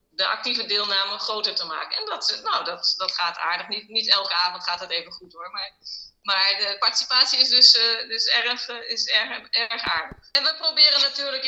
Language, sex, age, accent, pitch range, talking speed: Dutch, female, 20-39, Dutch, 180-205 Hz, 210 wpm